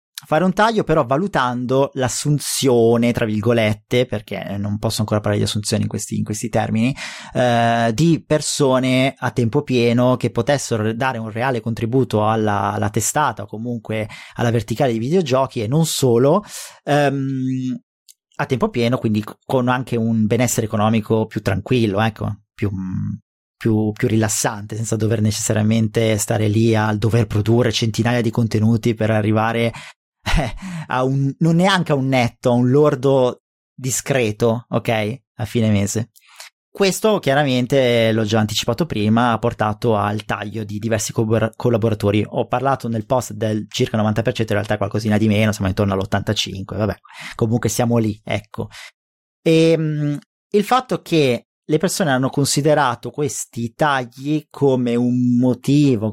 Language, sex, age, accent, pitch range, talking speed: Italian, male, 30-49, native, 110-130 Hz, 145 wpm